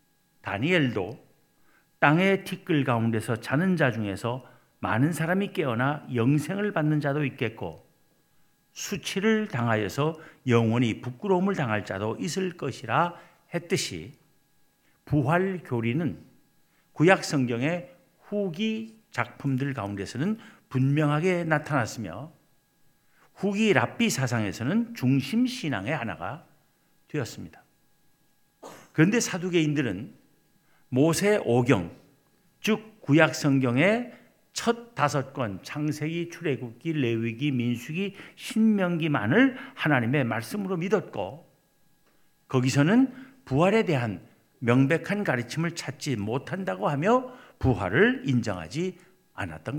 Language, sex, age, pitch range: Korean, male, 50-69, 130-190 Hz